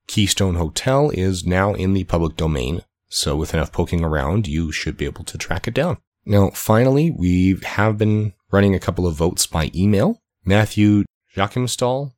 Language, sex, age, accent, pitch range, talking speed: English, male, 30-49, American, 80-105 Hz, 175 wpm